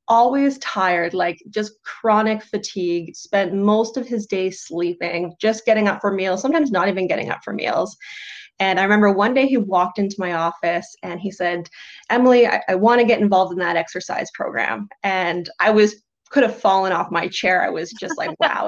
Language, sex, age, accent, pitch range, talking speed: English, female, 20-39, American, 190-230 Hz, 200 wpm